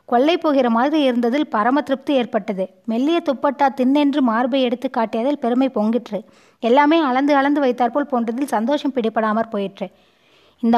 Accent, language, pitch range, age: native, Tamil, 235-285 Hz, 20-39